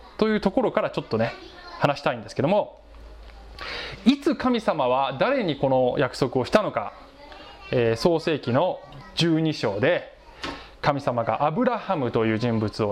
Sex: male